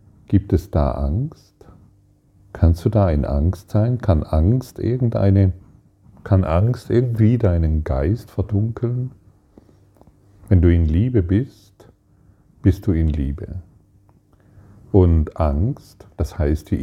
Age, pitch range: 40-59, 85-100 Hz